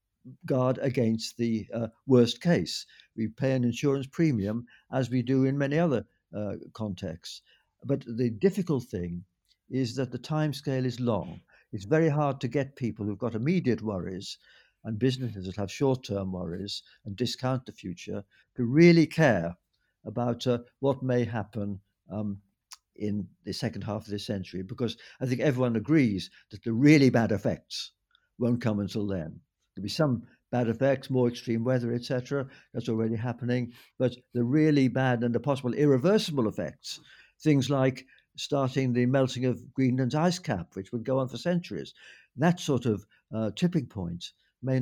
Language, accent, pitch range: English, British, 105-135 Hz